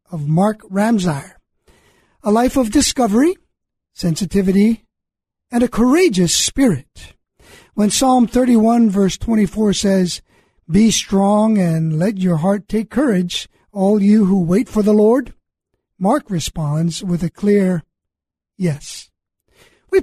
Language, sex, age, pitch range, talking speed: English, male, 50-69, 180-240 Hz, 120 wpm